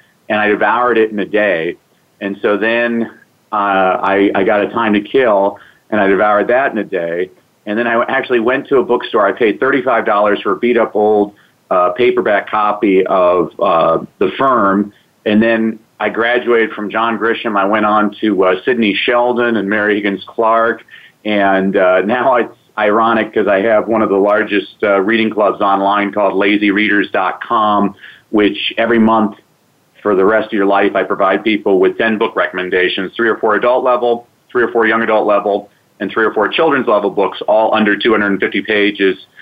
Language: English